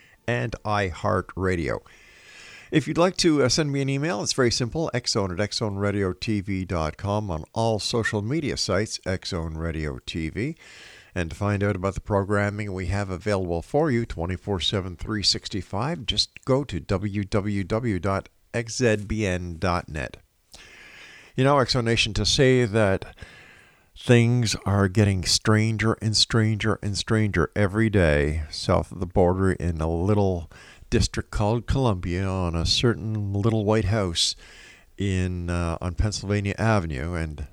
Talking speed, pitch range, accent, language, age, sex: 130 wpm, 90-115 Hz, American, English, 50-69, male